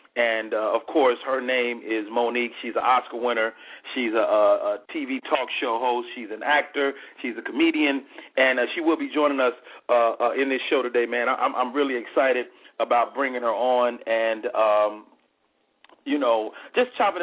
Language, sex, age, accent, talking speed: English, male, 40-59, American, 190 wpm